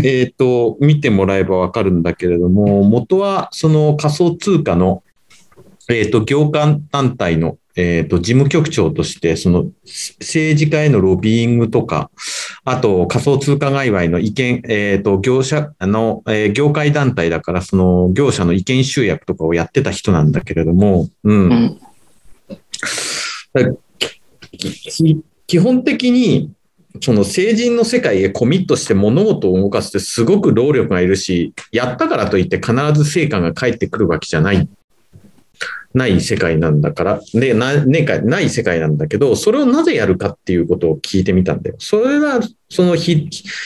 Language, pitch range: Japanese, 95-155 Hz